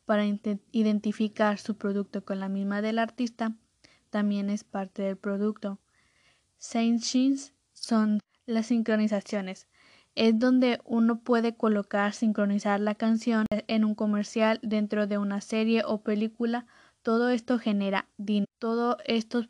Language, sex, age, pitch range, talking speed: Spanish, female, 10-29, 205-230 Hz, 130 wpm